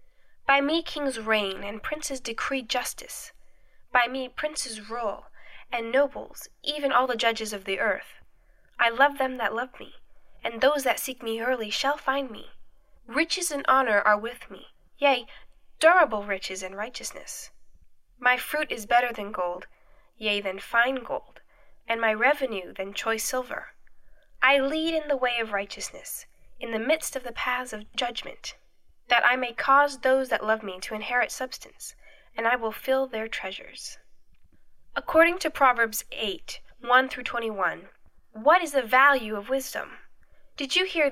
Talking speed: 160 wpm